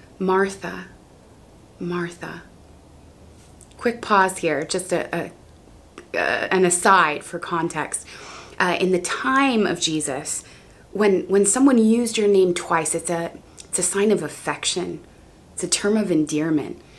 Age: 20-39